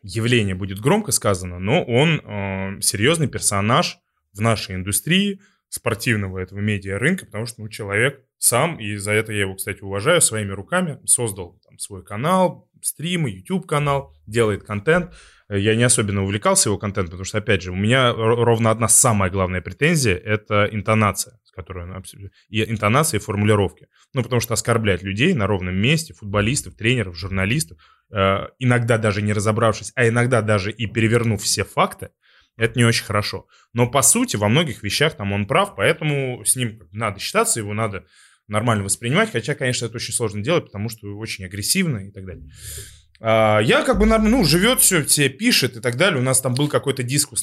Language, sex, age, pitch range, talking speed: Russian, male, 20-39, 100-130 Hz, 170 wpm